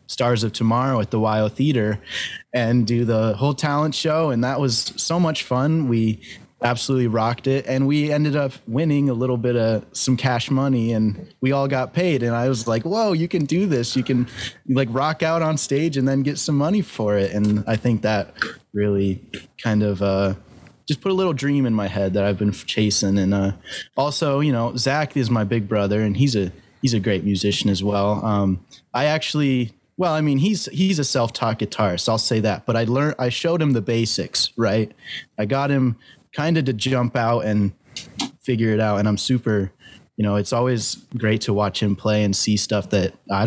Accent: American